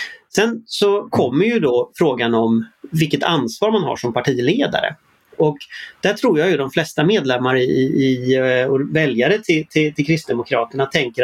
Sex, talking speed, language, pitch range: male, 165 wpm, Swedish, 135-195 Hz